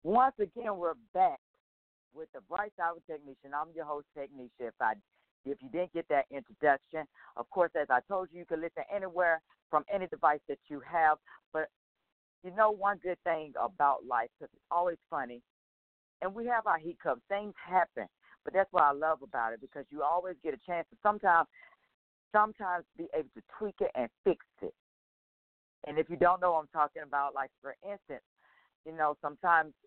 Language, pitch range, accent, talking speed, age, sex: English, 140-185 Hz, American, 190 wpm, 50-69, female